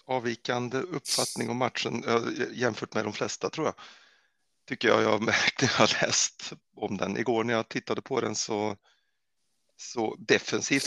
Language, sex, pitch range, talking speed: Swedish, male, 100-120 Hz, 140 wpm